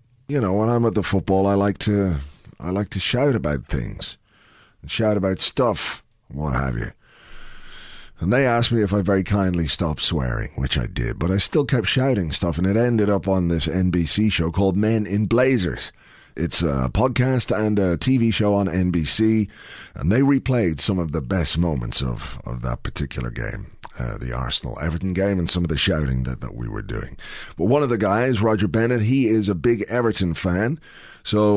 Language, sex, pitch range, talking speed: English, male, 85-115 Hz, 200 wpm